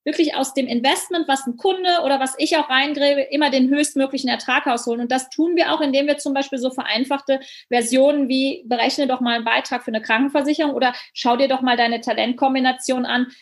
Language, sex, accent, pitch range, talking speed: German, female, German, 250-295 Hz, 205 wpm